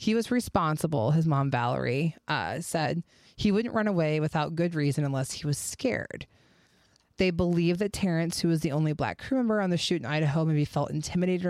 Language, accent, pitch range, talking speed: English, American, 150-175 Hz, 200 wpm